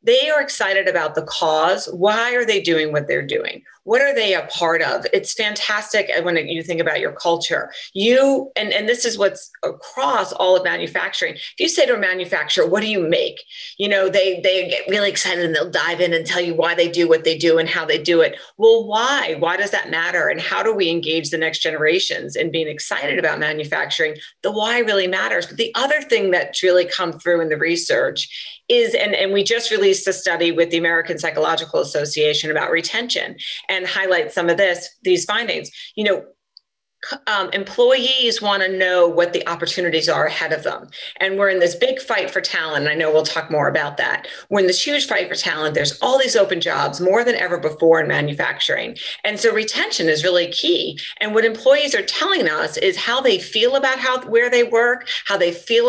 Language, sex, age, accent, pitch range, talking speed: English, female, 40-59, American, 170-240 Hz, 215 wpm